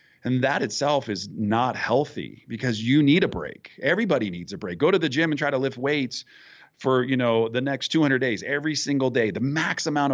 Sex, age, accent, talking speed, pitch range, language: male, 40-59, American, 220 wpm, 110-145 Hz, English